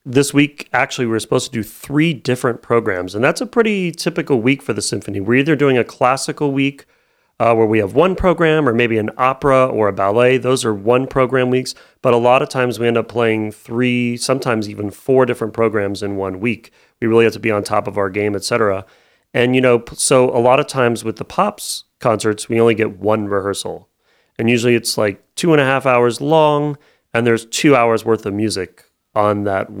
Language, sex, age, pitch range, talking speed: English, male, 30-49, 105-130 Hz, 215 wpm